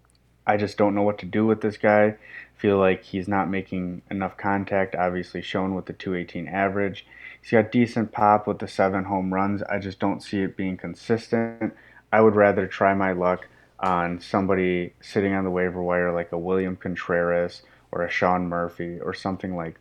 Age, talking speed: 20-39, 190 wpm